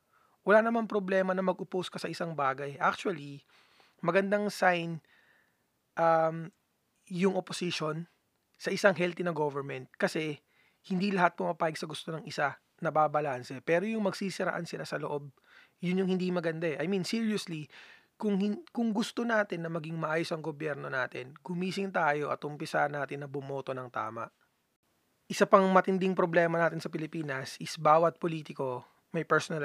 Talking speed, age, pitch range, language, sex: 150 wpm, 20-39, 145-185 Hz, Filipino, male